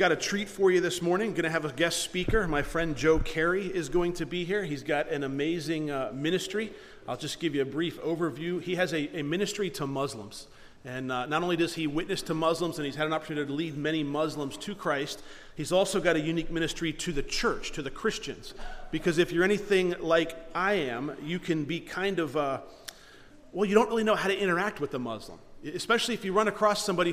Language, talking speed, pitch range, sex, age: English, 230 wpm, 155-185 Hz, male, 40-59